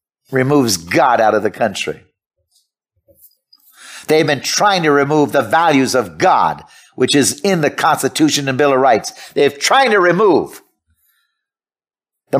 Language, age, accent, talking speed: English, 50-69, American, 140 wpm